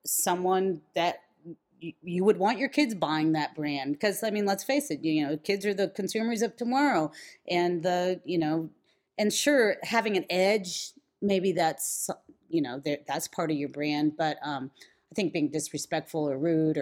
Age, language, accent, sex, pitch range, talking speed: 30-49, English, American, female, 145-190 Hz, 180 wpm